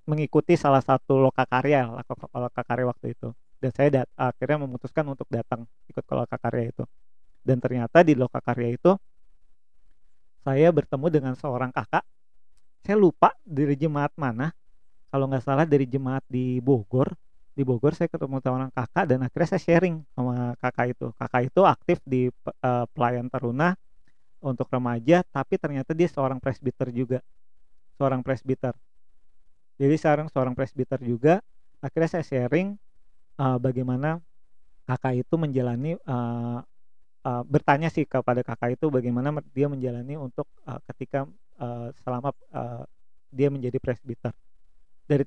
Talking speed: 140 wpm